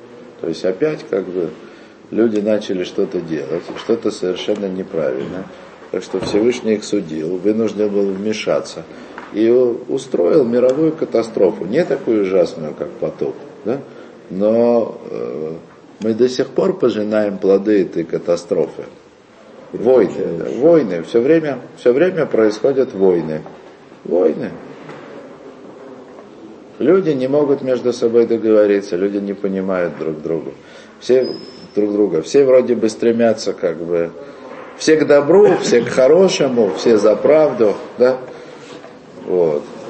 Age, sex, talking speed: 50-69, male, 120 wpm